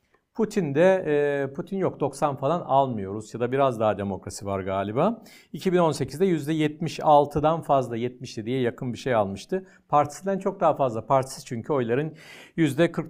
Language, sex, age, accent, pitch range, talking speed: Turkish, male, 60-79, native, 135-195 Hz, 145 wpm